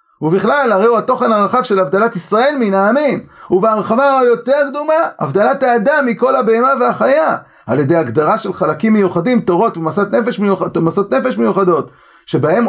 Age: 40-59